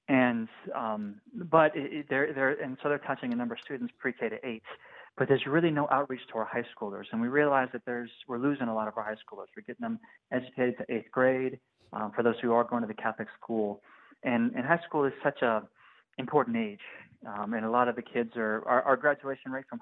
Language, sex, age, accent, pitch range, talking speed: English, male, 20-39, American, 115-130 Hz, 235 wpm